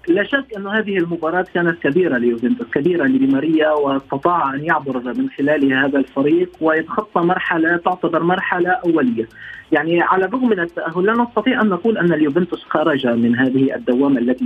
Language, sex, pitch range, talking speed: Arabic, male, 145-210 Hz, 160 wpm